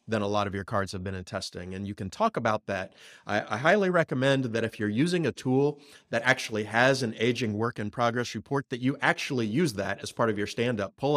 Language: English